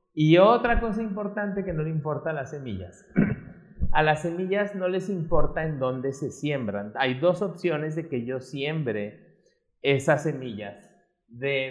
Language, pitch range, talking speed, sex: Spanish, 130-170 Hz, 160 wpm, male